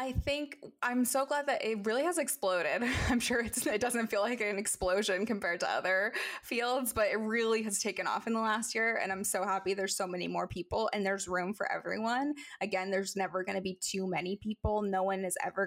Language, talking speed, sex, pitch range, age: English, 230 wpm, female, 195-245 Hz, 20-39